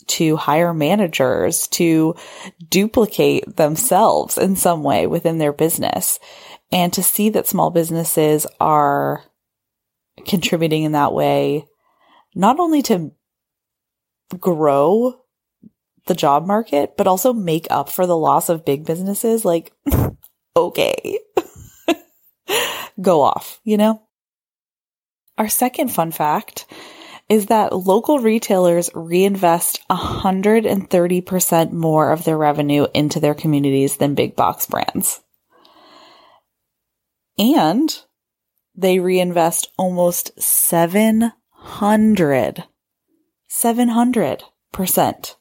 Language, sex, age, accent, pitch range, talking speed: English, female, 20-39, American, 160-225 Hz, 95 wpm